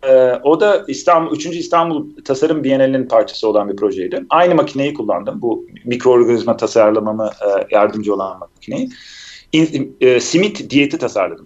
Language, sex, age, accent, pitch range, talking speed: Turkish, male, 40-59, native, 125-165 Hz, 130 wpm